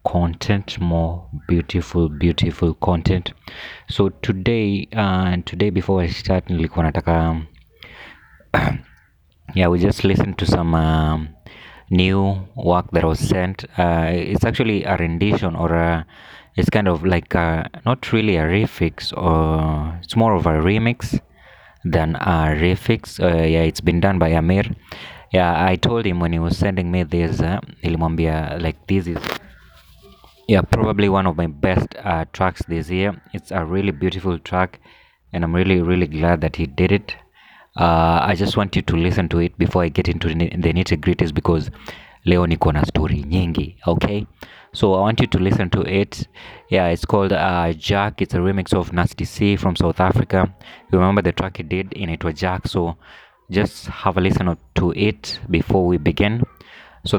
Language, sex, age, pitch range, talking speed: English, male, 20-39, 85-100 Hz, 170 wpm